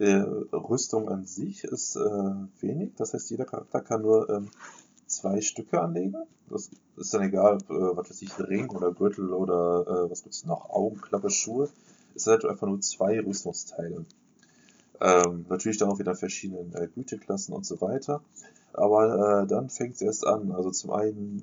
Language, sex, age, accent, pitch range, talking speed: German, male, 20-39, German, 100-125 Hz, 175 wpm